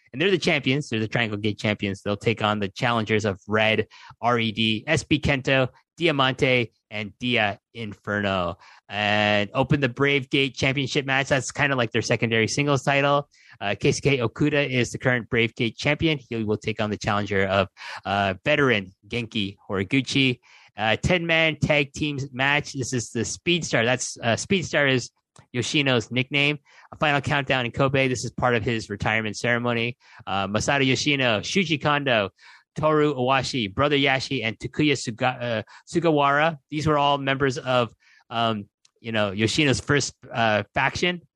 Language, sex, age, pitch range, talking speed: English, male, 20-39, 110-145 Hz, 165 wpm